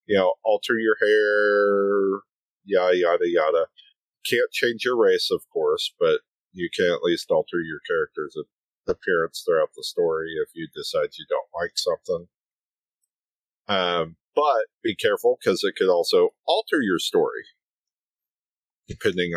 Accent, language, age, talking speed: American, English, 40-59, 140 wpm